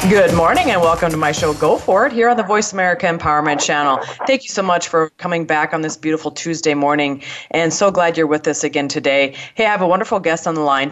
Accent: American